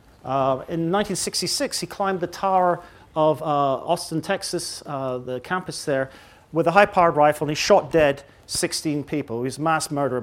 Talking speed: 175 wpm